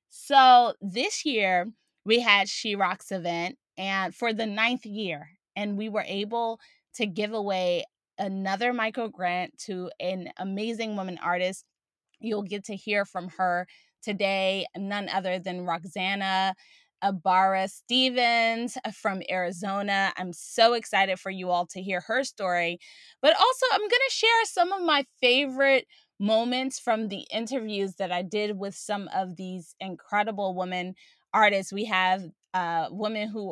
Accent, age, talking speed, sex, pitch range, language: American, 20-39, 145 wpm, female, 185-225 Hz, English